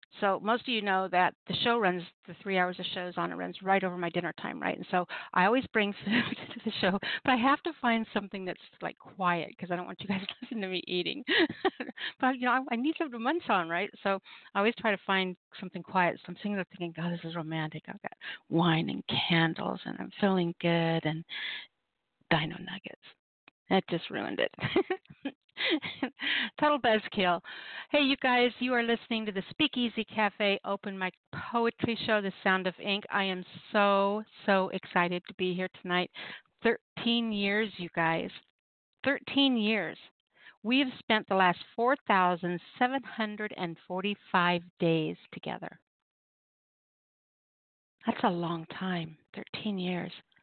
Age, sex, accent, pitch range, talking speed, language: 50-69, female, American, 180-235 Hz, 175 wpm, English